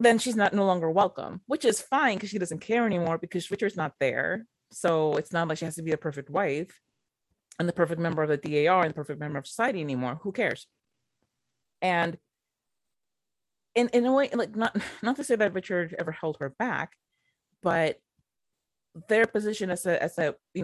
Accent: American